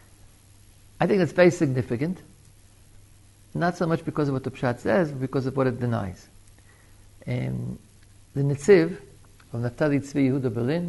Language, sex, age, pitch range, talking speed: English, male, 60-79, 100-145 Hz, 160 wpm